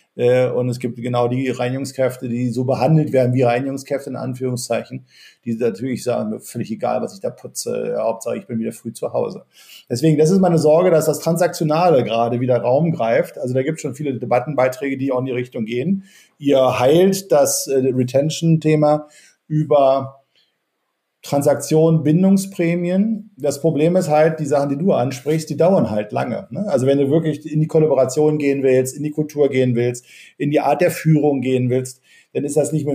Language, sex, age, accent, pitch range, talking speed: German, male, 50-69, German, 130-160 Hz, 185 wpm